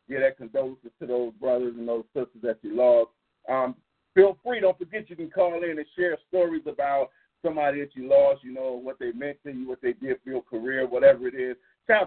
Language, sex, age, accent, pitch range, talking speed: English, male, 40-59, American, 130-180 Hz, 230 wpm